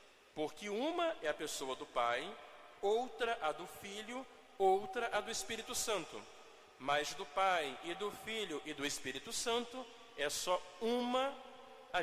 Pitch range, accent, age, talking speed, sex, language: 160-225 Hz, Brazilian, 40-59, 150 wpm, male, Portuguese